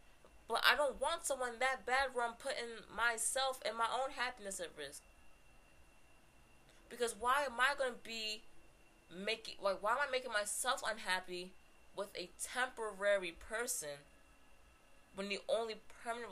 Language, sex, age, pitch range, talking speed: English, female, 20-39, 155-215 Hz, 145 wpm